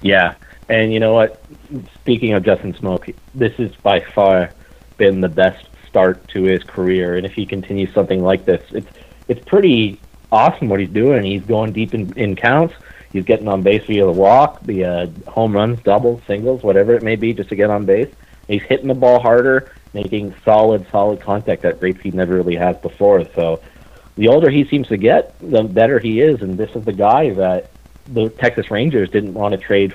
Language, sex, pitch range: English, male, 90-110 Hz